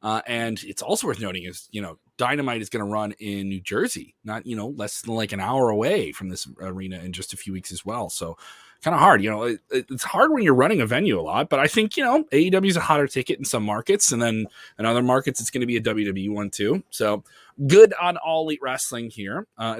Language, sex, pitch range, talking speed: English, male, 105-155 Hz, 260 wpm